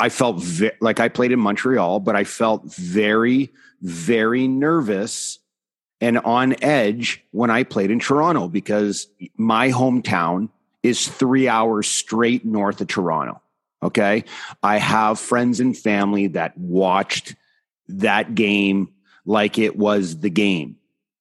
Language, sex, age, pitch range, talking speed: English, male, 30-49, 100-125 Hz, 135 wpm